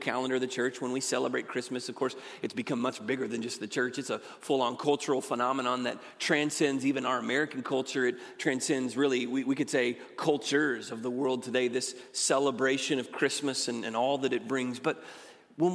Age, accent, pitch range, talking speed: 30-49, American, 130-195 Hz, 200 wpm